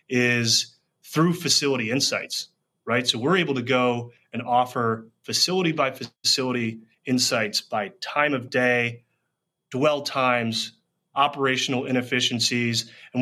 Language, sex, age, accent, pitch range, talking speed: English, male, 30-49, American, 115-135 Hz, 115 wpm